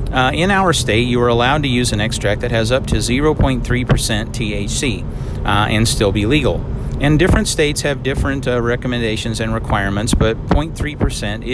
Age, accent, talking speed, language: 40-59, American, 170 wpm, English